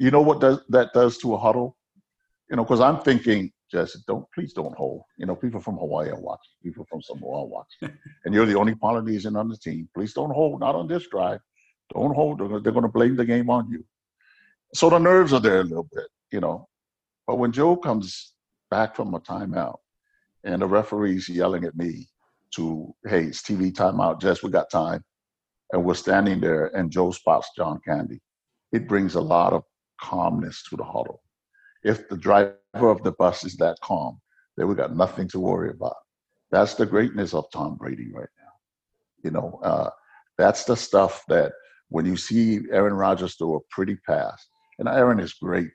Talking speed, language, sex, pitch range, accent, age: 195 wpm, English, male, 95-135 Hz, American, 50-69